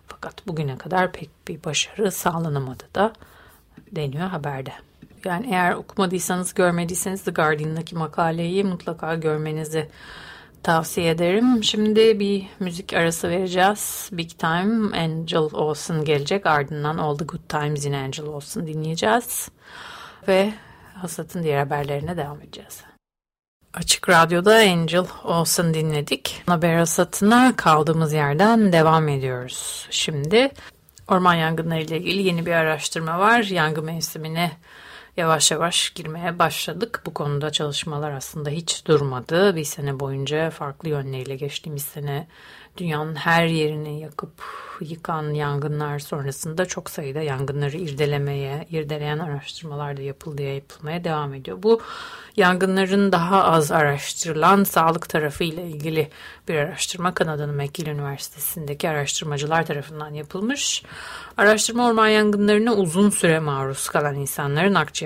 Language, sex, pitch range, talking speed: Turkish, female, 150-185 Hz, 120 wpm